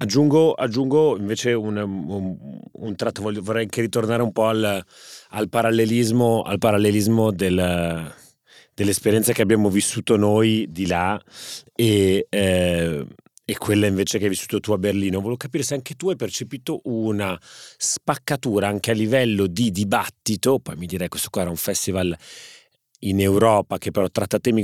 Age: 30-49